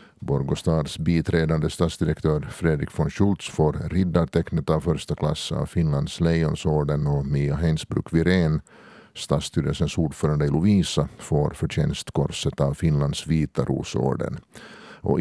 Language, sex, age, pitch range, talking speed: Swedish, male, 50-69, 75-95 Hz, 110 wpm